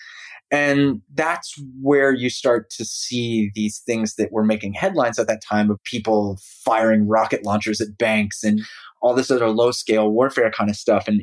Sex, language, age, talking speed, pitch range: male, English, 30-49, 175 wpm, 105-145 Hz